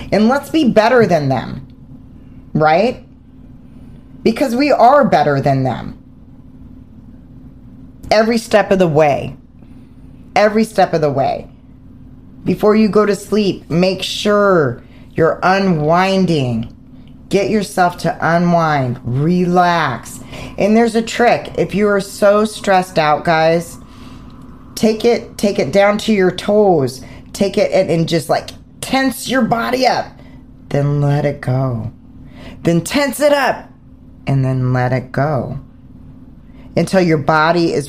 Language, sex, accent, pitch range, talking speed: English, female, American, 130-195 Hz, 130 wpm